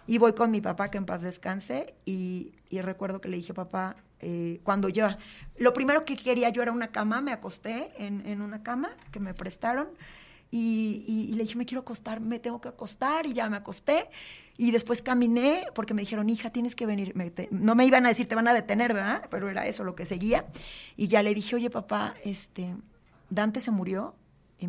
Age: 40-59